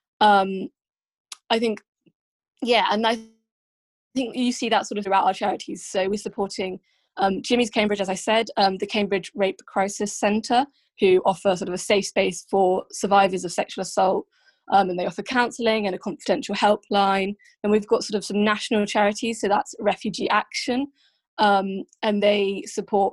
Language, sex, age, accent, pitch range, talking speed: English, female, 20-39, British, 195-220 Hz, 175 wpm